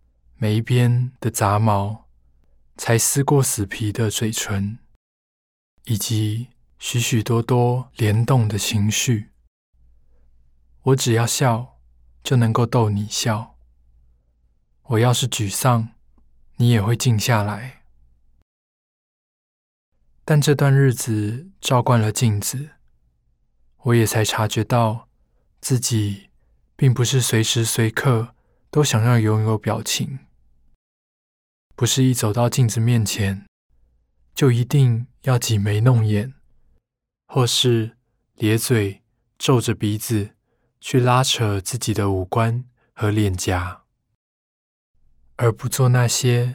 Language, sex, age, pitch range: Chinese, male, 20-39, 95-125 Hz